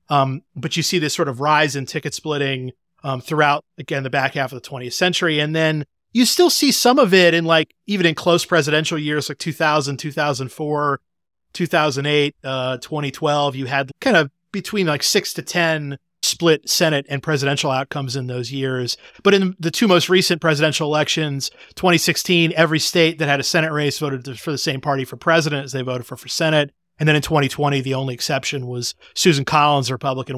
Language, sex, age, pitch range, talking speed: English, male, 30-49, 135-165 Hz, 200 wpm